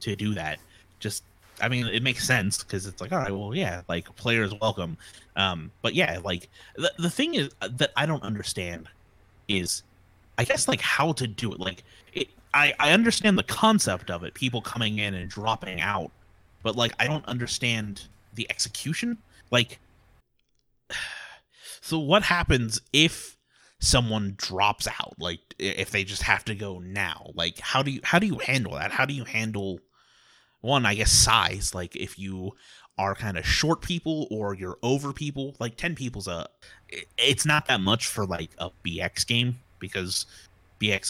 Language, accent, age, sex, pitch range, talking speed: English, American, 30-49, male, 90-125 Hz, 180 wpm